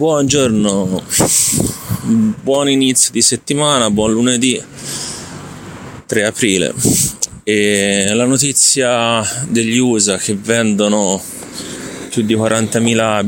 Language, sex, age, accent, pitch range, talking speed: Italian, male, 30-49, native, 100-125 Hz, 85 wpm